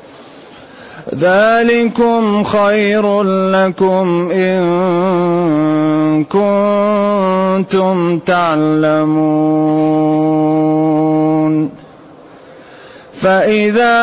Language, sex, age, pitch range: Arabic, male, 30-49, 180-235 Hz